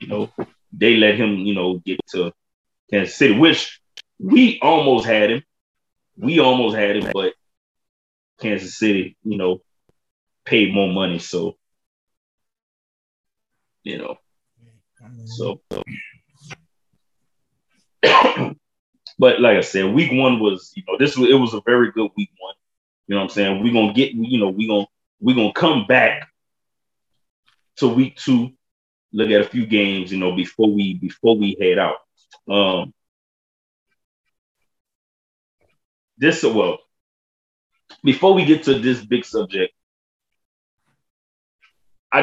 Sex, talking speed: male, 135 wpm